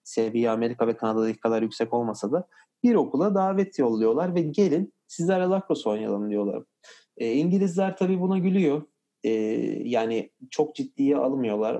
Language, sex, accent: Turkish, male, native